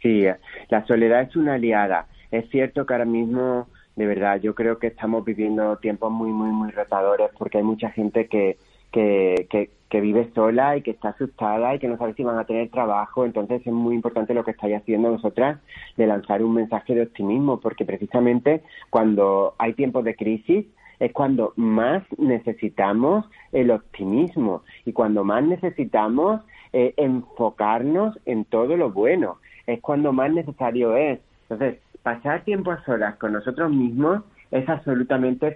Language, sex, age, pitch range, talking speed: Spanish, male, 30-49, 110-135 Hz, 165 wpm